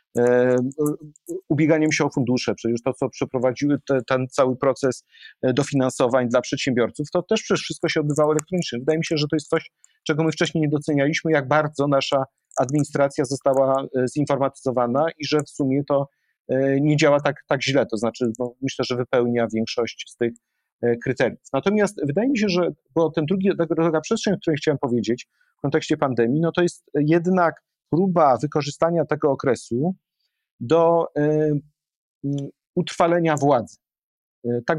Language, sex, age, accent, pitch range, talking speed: Polish, male, 40-59, native, 130-160 Hz, 150 wpm